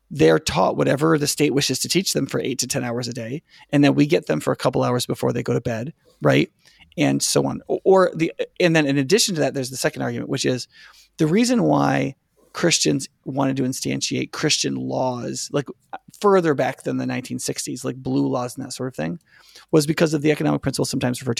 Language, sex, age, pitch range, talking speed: English, male, 30-49, 125-155 Hz, 220 wpm